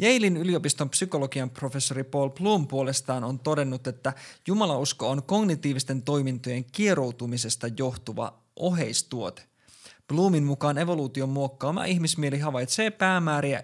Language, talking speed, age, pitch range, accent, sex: Finnish, 105 wpm, 20-39, 130-170 Hz, native, male